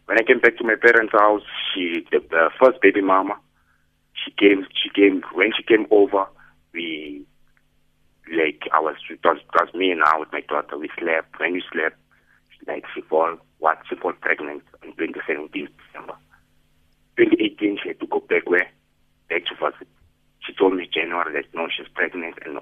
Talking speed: 195 wpm